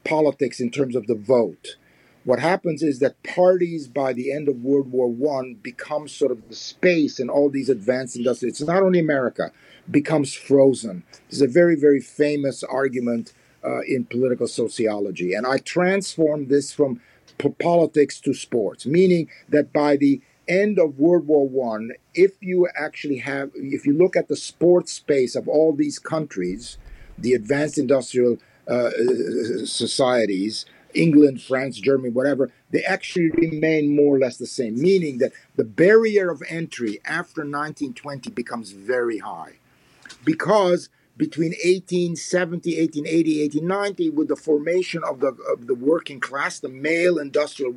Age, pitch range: 50-69, 135-175 Hz